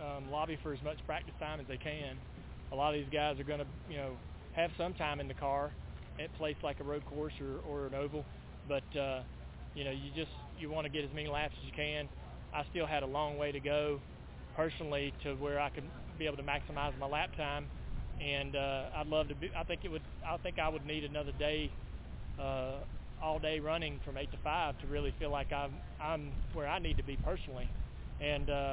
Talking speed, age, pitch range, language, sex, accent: 230 wpm, 20-39, 120-155 Hz, English, male, American